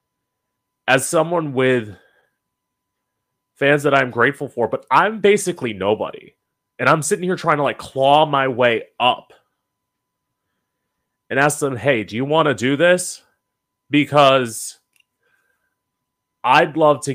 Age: 30-49